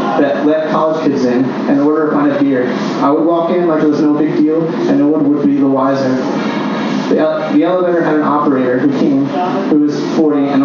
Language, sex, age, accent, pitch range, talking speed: English, male, 20-39, American, 140-165 Hz, 230 wpm